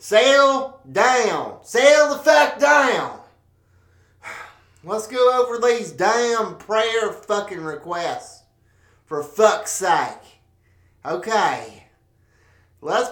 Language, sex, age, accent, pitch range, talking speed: English, male, 30-49, American, 140-220 Hz, 85 wpm